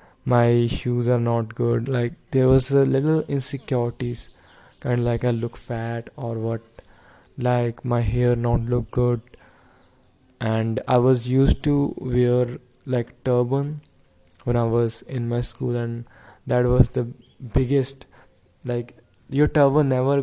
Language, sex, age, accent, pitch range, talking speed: English, male, 20-39, Indian, 115-130 Hz, 140 wpm